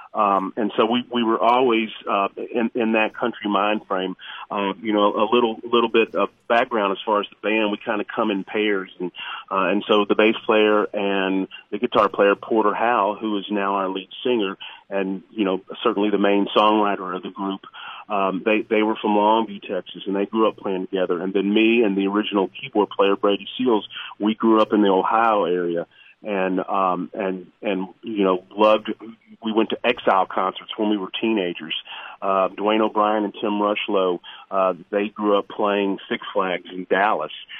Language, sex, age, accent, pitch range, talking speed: English, male, 40-59, American, 95-110 Hz, 195 wpm